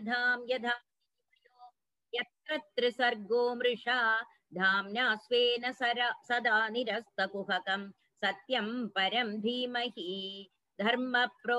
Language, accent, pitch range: Tamil, native, 215-245 Hz